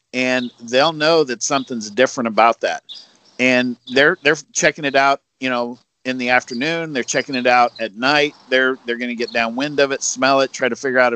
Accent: American